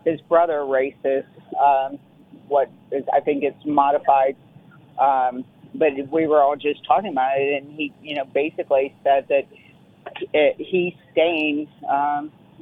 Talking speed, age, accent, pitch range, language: 145 wpm, 40-59, American, 135-165 Hz, English